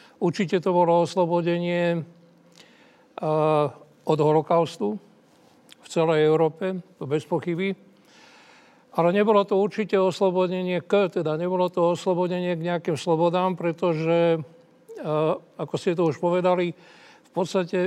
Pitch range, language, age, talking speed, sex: 170-195 Hz, Slovak, 60-79, 110 wpm, male